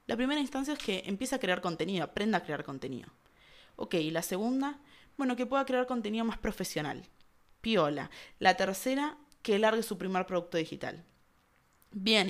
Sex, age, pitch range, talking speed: female, 20-39, 180-250 Hz, 165 wpm